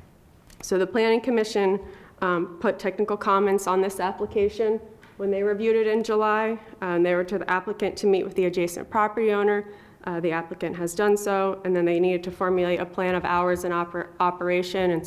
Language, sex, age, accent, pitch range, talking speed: English, female, 20-39, American, 170-195 Hz, 195 wpm